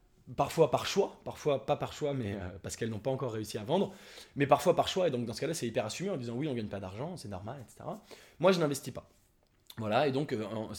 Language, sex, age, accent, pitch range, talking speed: English, male, 20-39, French, 115-145 Hz, 275 wpm